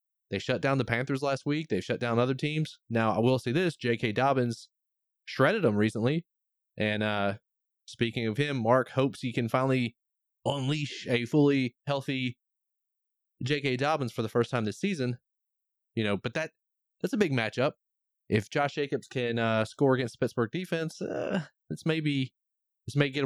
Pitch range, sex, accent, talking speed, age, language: 115-145 Hz, male, American, 175 wpm, 20-39, English